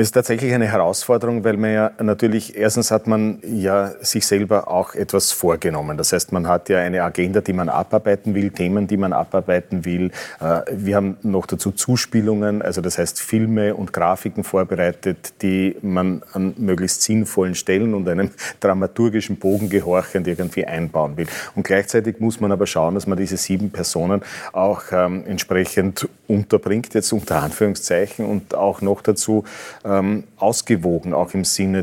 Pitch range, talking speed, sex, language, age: 90-105 Hz, 160 wpm, male, German, 30-49